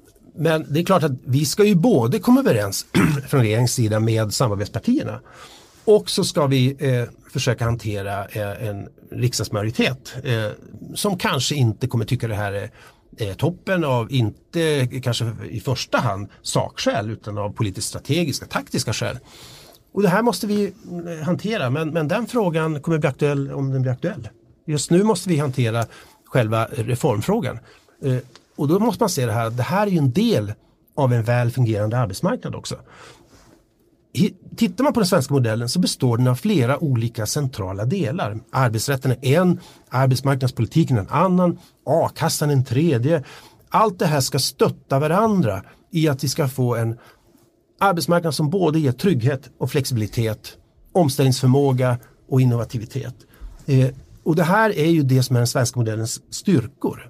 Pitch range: 115-165 Hz